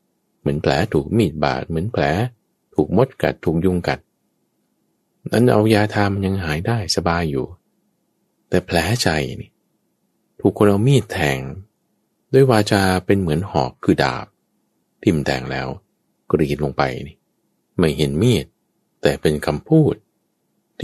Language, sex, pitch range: Thai, male, 75-105 Hz